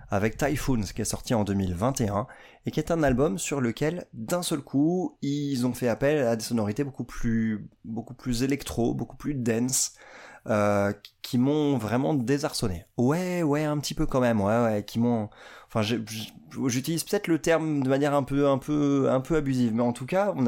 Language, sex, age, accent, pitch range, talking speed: French, male, 20-39, French, 115-150 Hz, 195 wpm